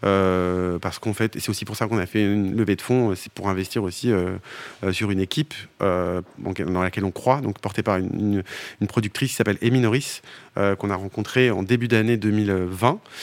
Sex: male